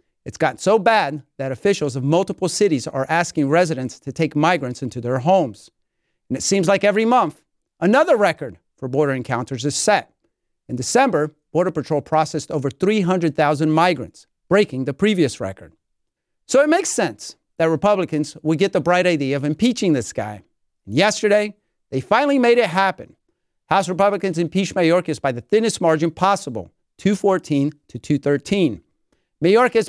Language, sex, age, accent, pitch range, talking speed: English, male, 40-59, American, 145-200 Hz, 155 wpm